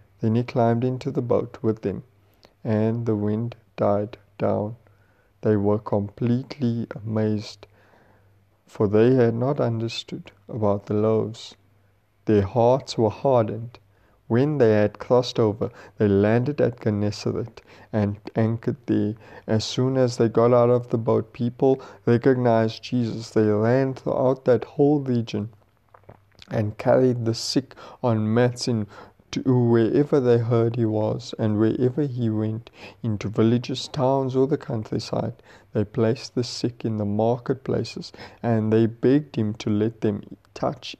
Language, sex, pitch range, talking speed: English, male, 105-125 Hz, 140 wpm